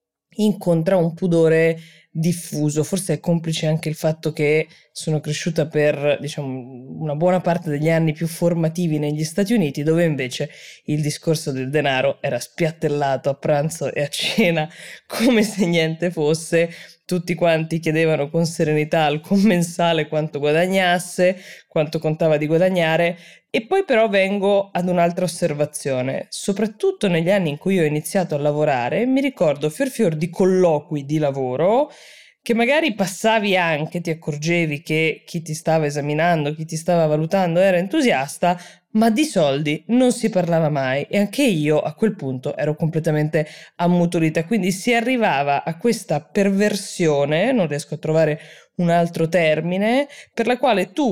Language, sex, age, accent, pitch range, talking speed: Italian, female, 20-39, native, 155-195 Hz, 150 wpm